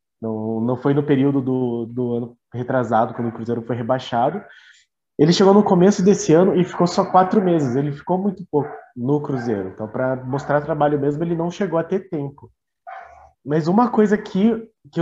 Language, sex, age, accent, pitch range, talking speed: Portuguese, male, 20-39, Brazilian, 140-185 Hz, 190 wpm